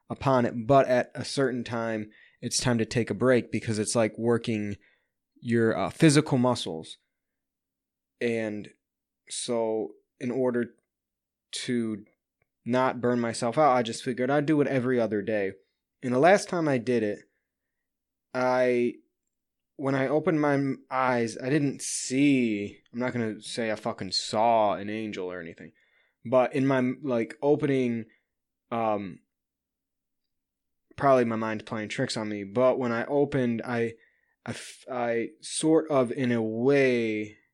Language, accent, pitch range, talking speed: English, American, 105-135 Hz, 145 wpm